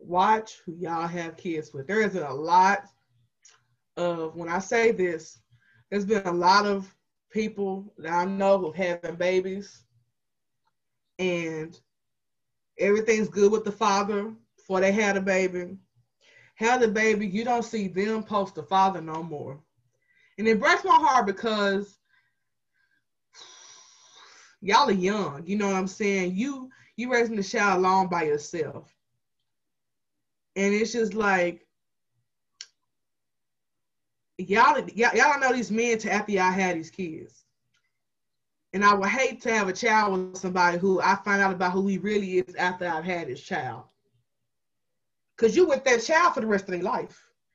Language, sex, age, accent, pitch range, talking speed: English, female, 20-39, American, 175-225 Hz, 155 wpm